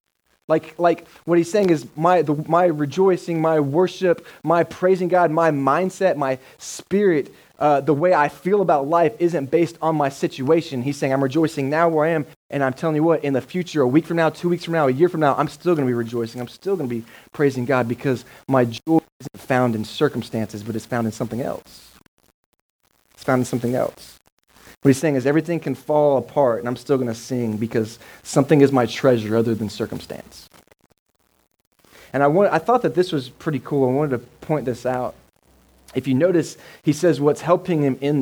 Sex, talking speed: male, 215 wpm